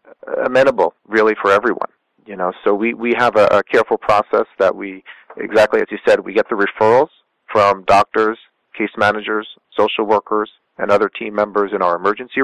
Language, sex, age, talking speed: English, male, 40-59, 180 wpm